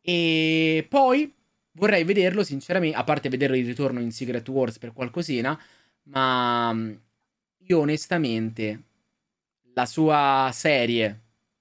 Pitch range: 110-160 Hz